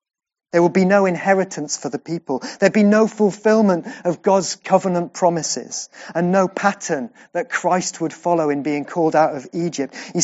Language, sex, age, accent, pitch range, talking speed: English, male, 30-49, British, 155-195 Hz, 175 wpm